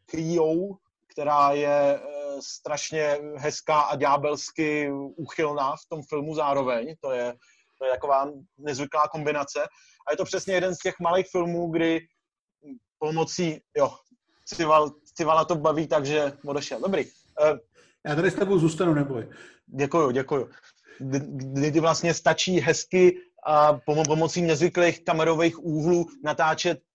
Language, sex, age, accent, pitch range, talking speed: Czech, male, 30-49, native, 145-165 Hz, 125 wpm